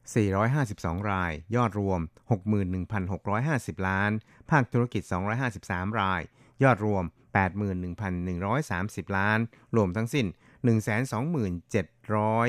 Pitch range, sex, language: 95-120 Hz, male, Thai